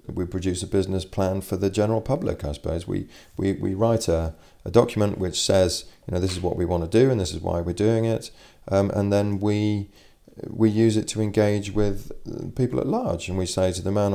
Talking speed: 235 wpm